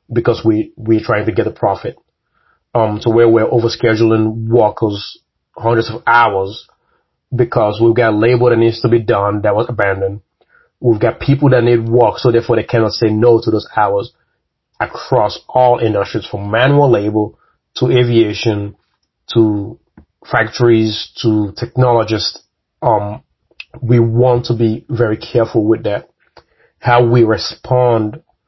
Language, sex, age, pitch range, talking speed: English, male, 30-49, 110-120 Hz, 145 wpm